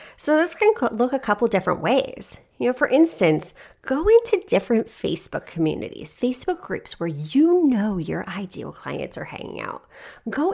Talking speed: 165 wpm